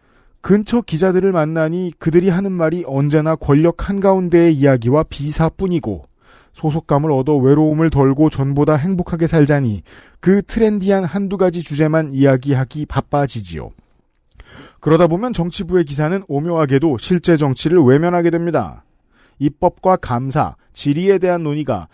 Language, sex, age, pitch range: Korean, male, 40-59, 140-180 Hz